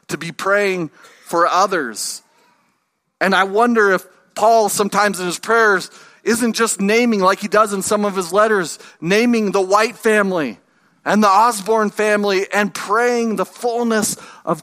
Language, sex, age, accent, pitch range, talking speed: English, male, 40-59, American, 175-220 Hz, 155 wpm